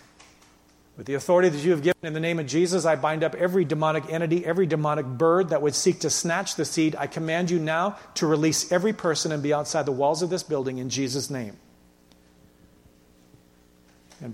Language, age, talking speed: English, 40-59, 200 wpm